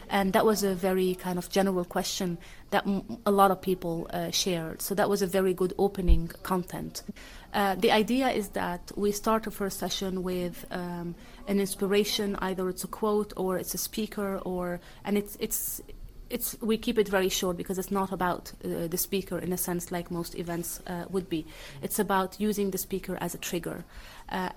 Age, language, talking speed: 30-49, English, 200 wpm